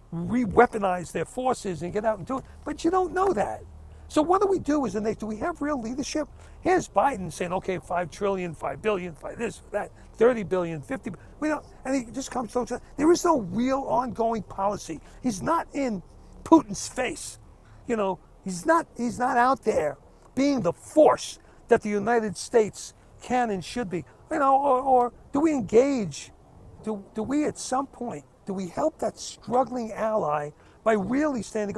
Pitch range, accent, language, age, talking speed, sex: 190-265 Hz, American, English, 50-69, 190 wpm, male